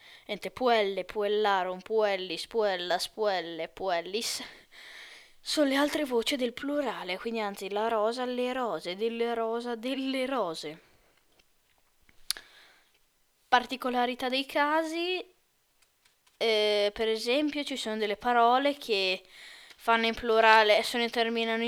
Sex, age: female, 10-29